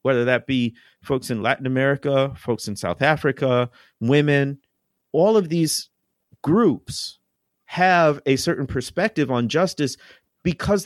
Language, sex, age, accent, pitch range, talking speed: English, male, 40-59, American, 125-170 Hz, 125 wpm